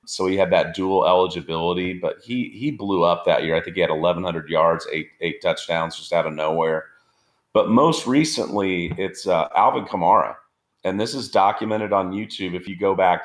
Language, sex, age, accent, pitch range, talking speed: English, male, 40-59, American, 80-95 Hz, 195 wpm